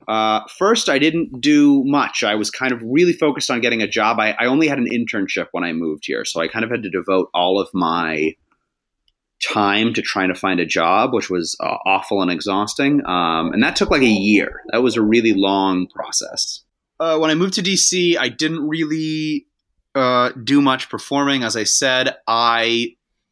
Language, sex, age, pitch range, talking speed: English, male, 30-49, 100-140 Hz, 205 wpm